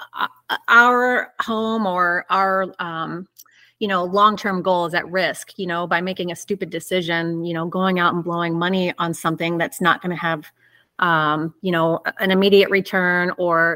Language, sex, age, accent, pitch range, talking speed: English, female, 30-49, American, 175-205 Hz, 180 wpm